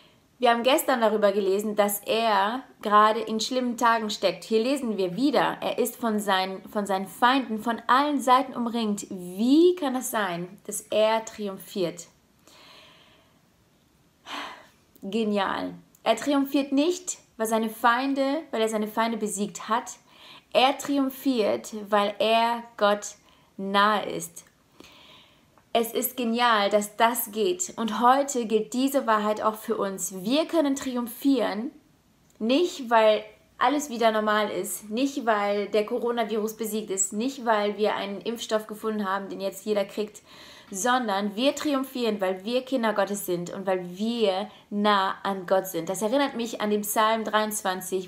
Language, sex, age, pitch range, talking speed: German, female, 20-39, 205-250 Hz, 145 wpm